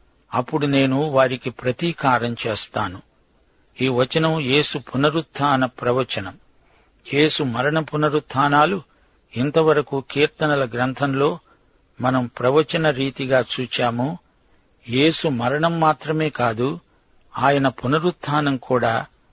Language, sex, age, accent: Telugu, male, 50-69, native